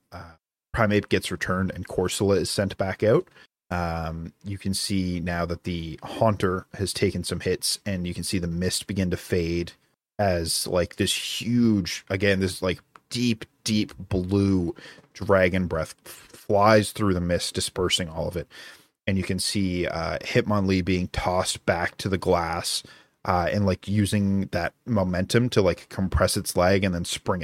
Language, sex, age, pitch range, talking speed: English, male, 30-49, 90-105 Hz, 170 wpm